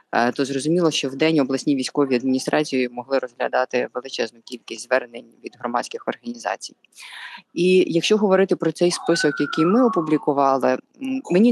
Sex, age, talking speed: female, 20-39, 135 wpm